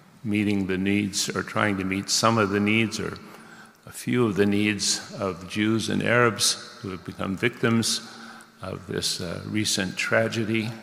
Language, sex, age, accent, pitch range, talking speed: English, male, 50-69, American, 95-110 Hz, 165 wpm